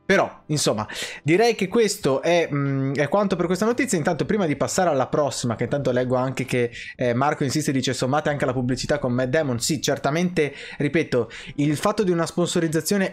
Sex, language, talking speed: male, Italian, 195 wpm